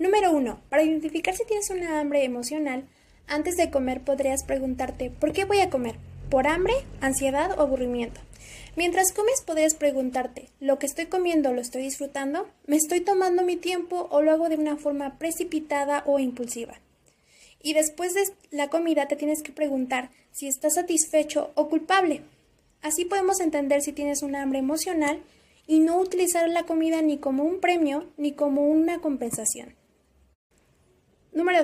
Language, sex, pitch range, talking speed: Spanish, female, 270-325 Hz, 160 wpm